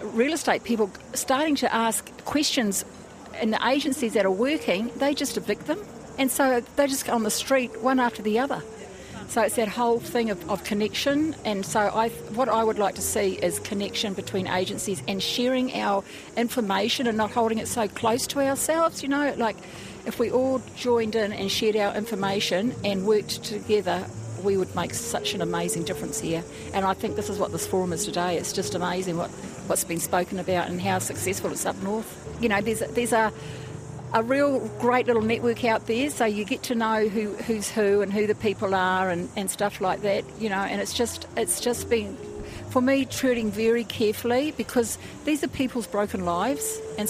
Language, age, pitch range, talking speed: English, 50-69, 200-245 Hz, 205 wpm